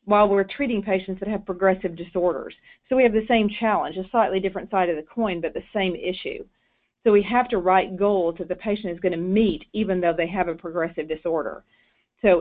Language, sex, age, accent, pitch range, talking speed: English, female, 40-59, American, 190-235 Hz, 220 wpm